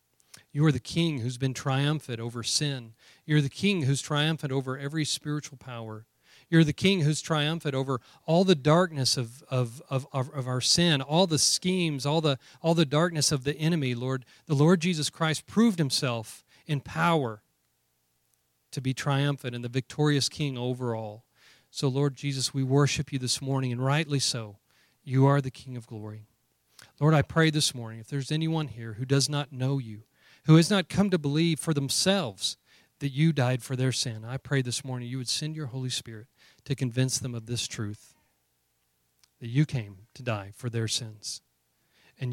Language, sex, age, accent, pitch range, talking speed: English, male, 40-59, American, 115-150 Hz, 185 wpm